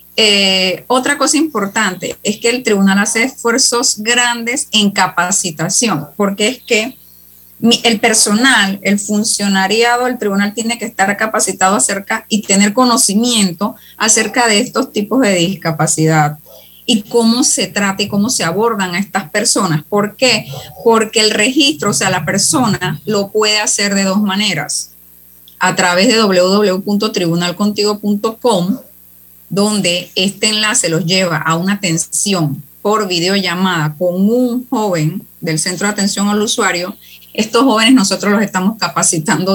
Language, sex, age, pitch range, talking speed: Spanish, female, 30-49, 175-215 Hz, 140 wpm